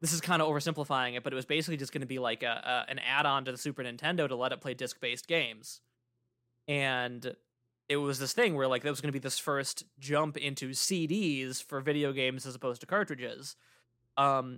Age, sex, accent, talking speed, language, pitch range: 20-39, male, American, 230 wpm, English, 125-145 Hz